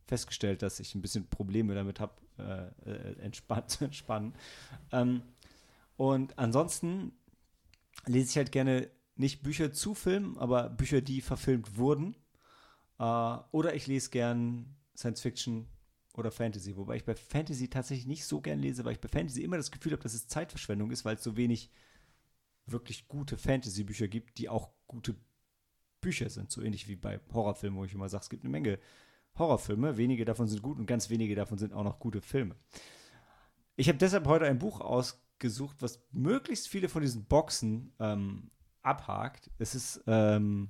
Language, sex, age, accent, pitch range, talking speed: German, male, 30-49, German, 105-140 Hz, 170 wpm